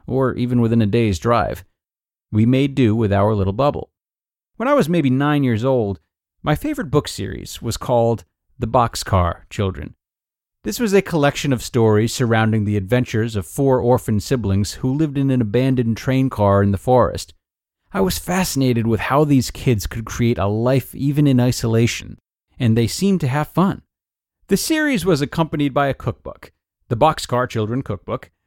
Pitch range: 110-160 Hz